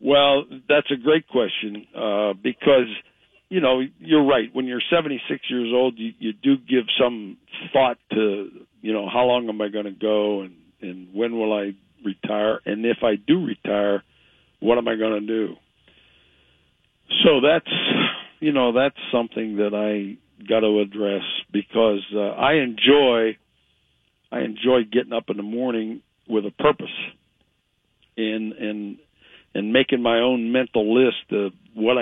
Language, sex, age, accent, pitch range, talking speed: English, male, 60-79, American, 100-125 Hz, 155 wpm